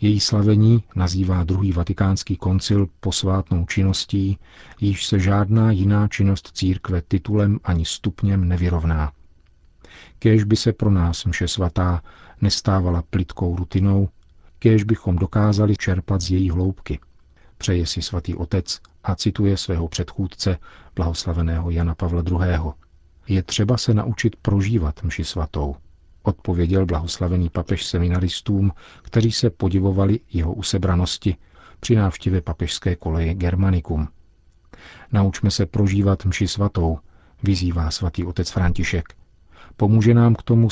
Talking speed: 120 wpm